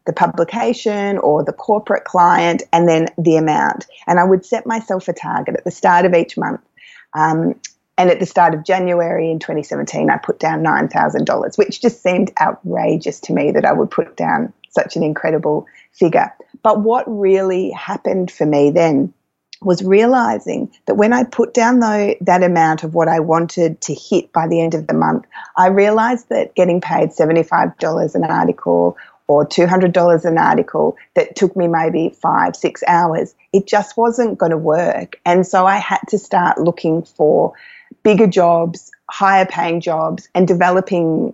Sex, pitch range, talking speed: female, 165-205 Hz, 170 wpm